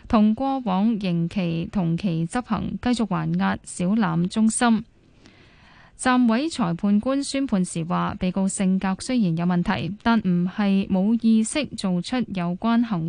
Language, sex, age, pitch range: Chinese, female, 10-29, 180-230 Hz